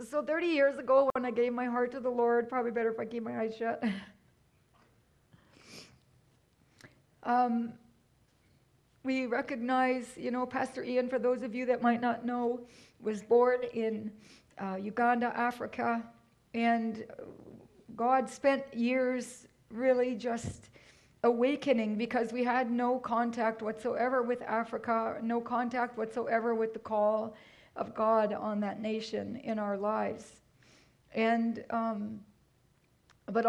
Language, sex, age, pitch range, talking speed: English, female, 40-59, 220-245 Hz, 130 wpm